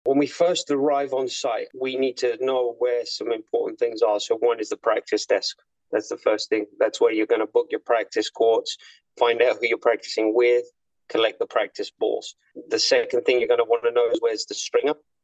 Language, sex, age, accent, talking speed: English, male, 30-49, British, 225 wpm